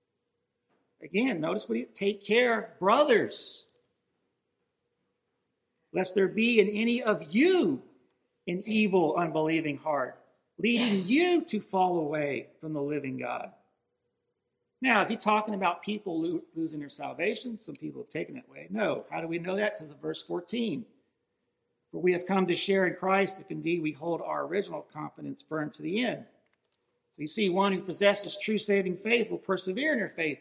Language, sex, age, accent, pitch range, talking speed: English, male, 50-69, American, 175-230 Hz, 165 wpm